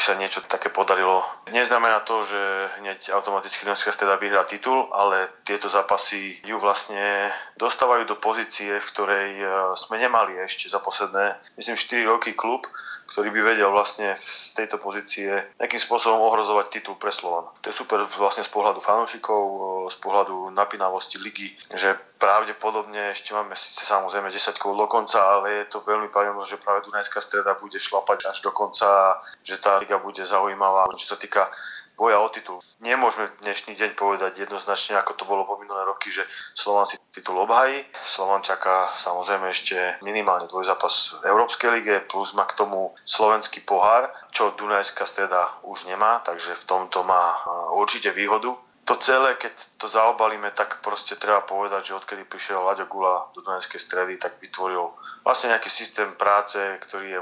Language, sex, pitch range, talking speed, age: Slovak, male, 95-105 Hz, 165 wpm, 20-39